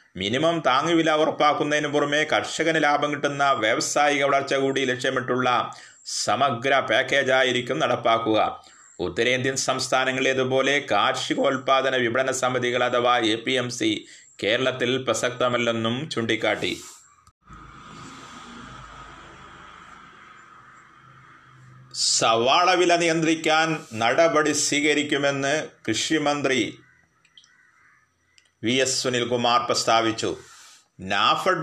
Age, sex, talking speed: 30-49, male, 70 wpm